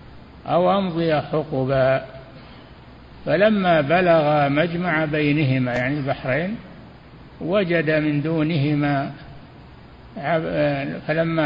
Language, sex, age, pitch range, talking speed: Arabic, male, 60-79, 140-165 Hz, 70 wpm